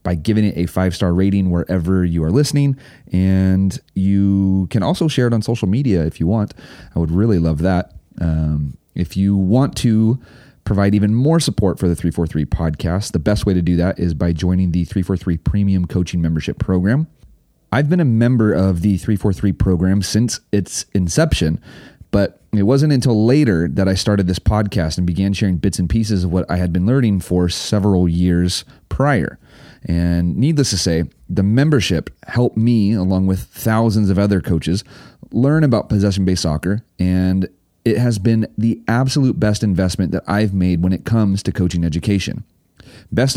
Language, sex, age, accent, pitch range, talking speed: English, male, 30-49, American, 90-110 Hz, 175 wpm